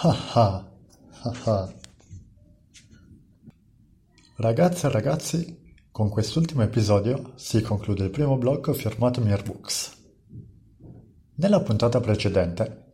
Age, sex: 50-69, male